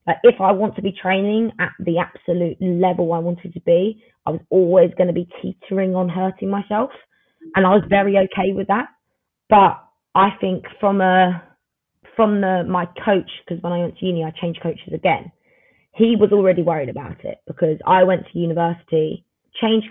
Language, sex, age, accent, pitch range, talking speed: English, female, 20-39, British, 165-195 Hz, 190 wpm